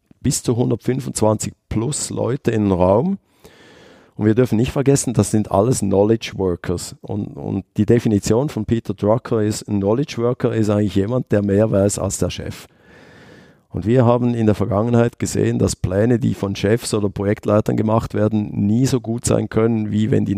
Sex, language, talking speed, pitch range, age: male, German, 185 wpm, 100-125 Hz, 50-69